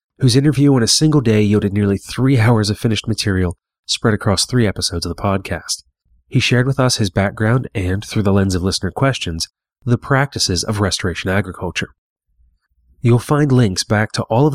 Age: 30-49